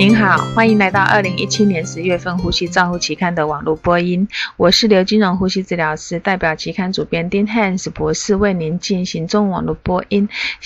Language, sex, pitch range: Chinese, female, 175-210 Hz